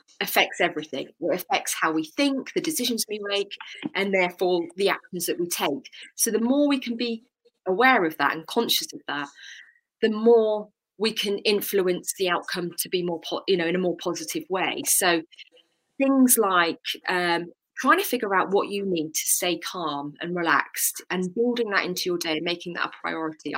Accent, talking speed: British, 195 wpm